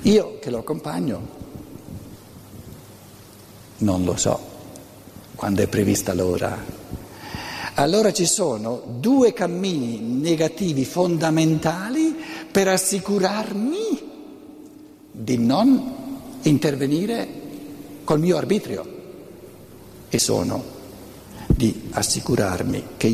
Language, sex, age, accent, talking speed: Italian, male, 60-79, native, 80 wpm